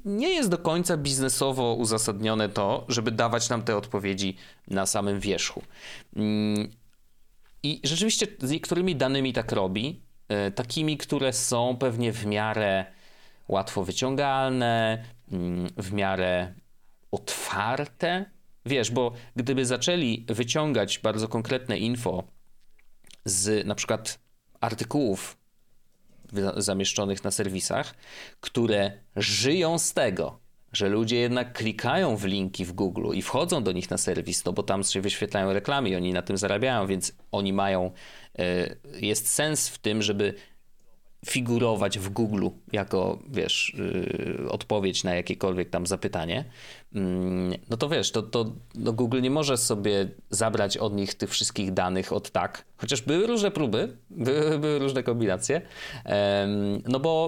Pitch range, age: 100-130 Hz, 30-49